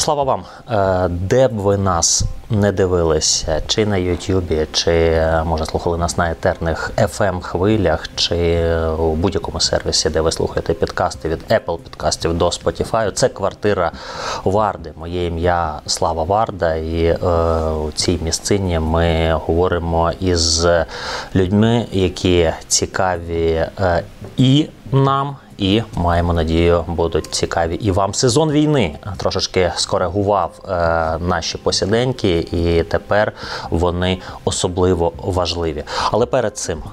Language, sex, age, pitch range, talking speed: Ukrainian, male, 20-39, 85-100 Hz, 115 wpm